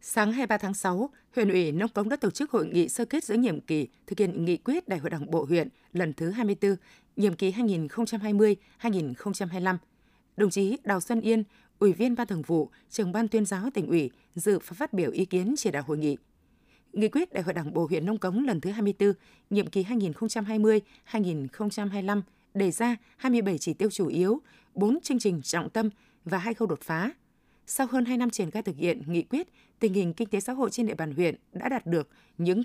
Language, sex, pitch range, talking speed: Vietnamese, female, 180-235 Hz, 210 wpm